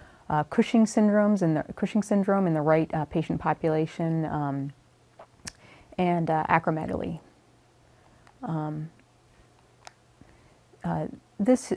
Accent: American